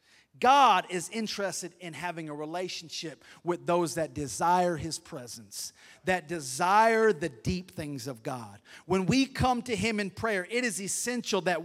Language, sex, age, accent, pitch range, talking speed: English, male, 30-49, American, 155-220 Hz, 160 wpm